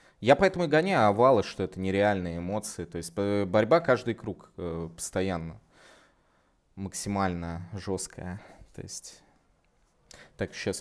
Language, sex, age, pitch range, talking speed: English, male, 20-39, 95-115 Hz, 115 wpm